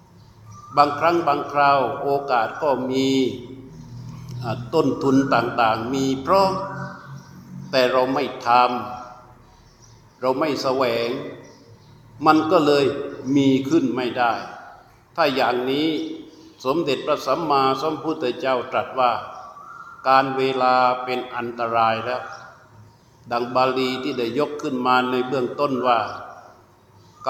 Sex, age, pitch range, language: male, 60-79, 125-145 Hz, Thai